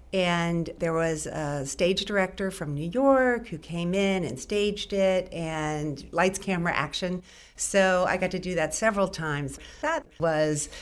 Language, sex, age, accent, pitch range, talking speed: English, female, 50-69, American, 160-200 Hz, 160 wpm